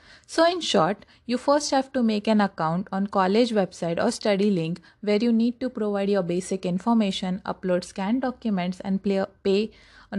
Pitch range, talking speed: 180-225 Hz, 175 wpm